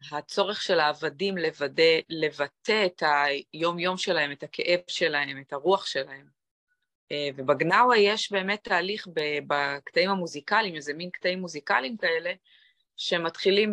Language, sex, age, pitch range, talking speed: Hebrew, female, 20-39, 160-220 Hz, 115 wpm